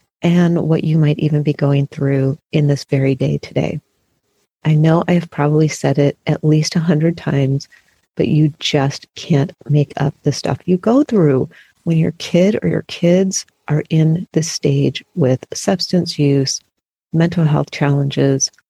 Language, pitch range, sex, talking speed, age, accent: English, 145-175 Hz, female, 165 wpm, 40-59, American